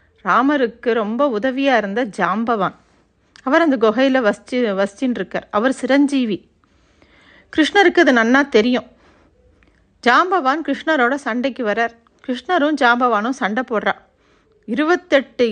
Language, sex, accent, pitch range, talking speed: Tamil, female, native, 215-265 Hz, 100 wpm